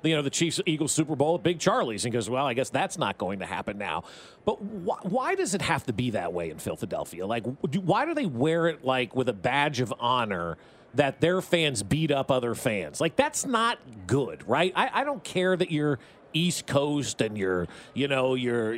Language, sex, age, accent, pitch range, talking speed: English, male, 40-59, American, 130-190 Hz, 225 wpm